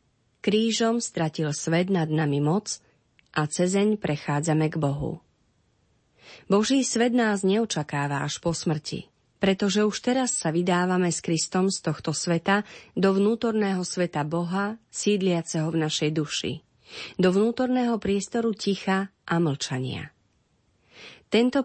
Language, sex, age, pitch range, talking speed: Slovak, female, 30-49, 150-200 Hz, 120 wpm